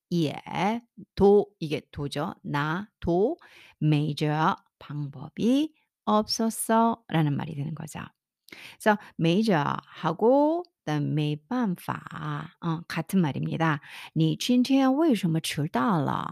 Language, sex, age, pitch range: Korean, female, 50-69, 155-250 Hz